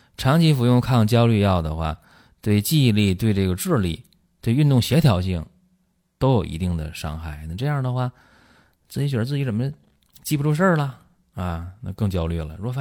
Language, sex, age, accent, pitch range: Chinese, male, 20-39, native, 90-130 Hz